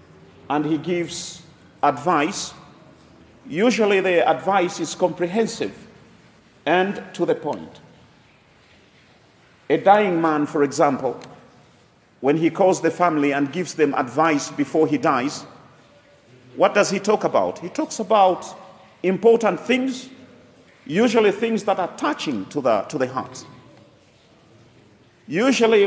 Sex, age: male, 40-59